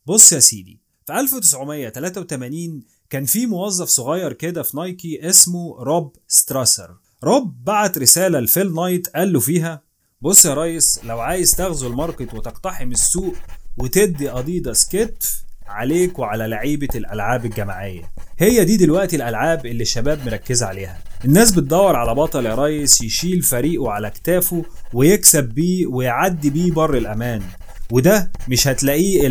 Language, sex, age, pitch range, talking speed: Arabic, male, 30-49, 120-175 Hz, 135 wpm